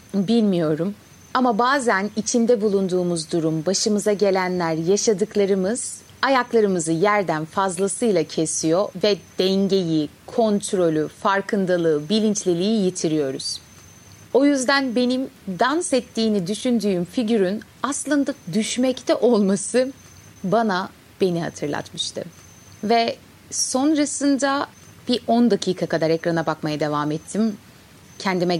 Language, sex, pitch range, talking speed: Turkish, female, 180-240 Hz, 90 wpm